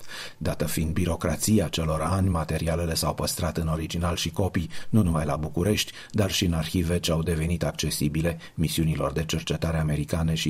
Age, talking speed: 40-59, 165 wpm